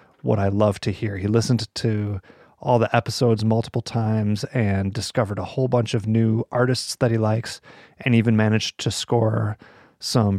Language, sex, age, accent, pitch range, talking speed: English, male, 30-49, American, 105-120 Hz, 175 wpm